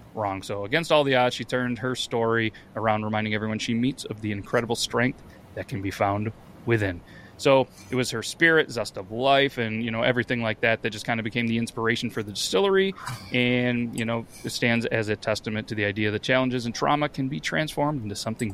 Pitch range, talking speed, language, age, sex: 110-125 Hz, 220 wpm, English, 30-49, male